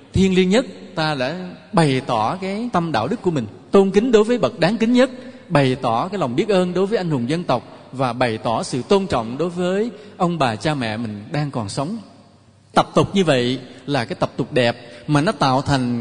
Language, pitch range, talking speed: English, 130-195 Hz, 230 wpm